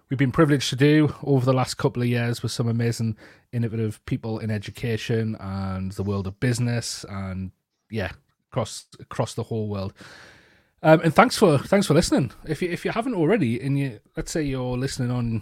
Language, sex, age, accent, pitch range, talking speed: English, male, 30-49, British, 110-145 Hz, 195 wpm